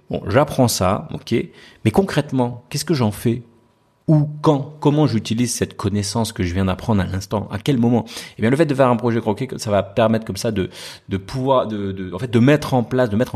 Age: 30-49